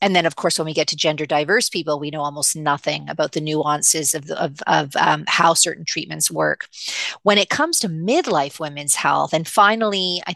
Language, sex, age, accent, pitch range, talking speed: English, female, 40-59, American, 155-195 Hz, 205 wpm